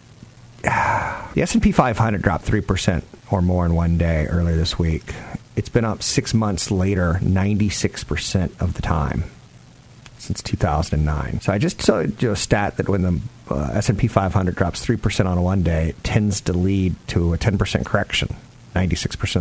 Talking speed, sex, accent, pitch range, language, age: 160 wpm, male, American, 90-115 Hz, English, 40-59